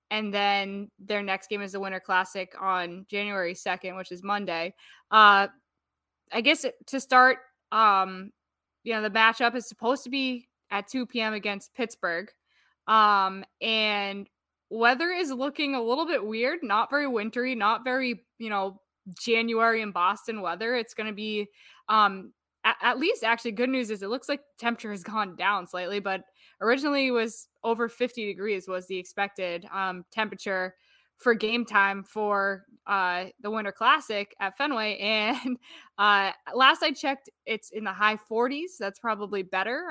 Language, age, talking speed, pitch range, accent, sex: English, 10-29, 160 wpm, 195-245 Hz, American, female